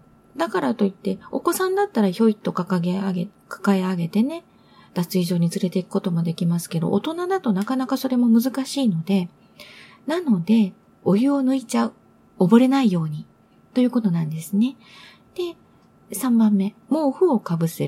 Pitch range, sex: 170-240 Hz, female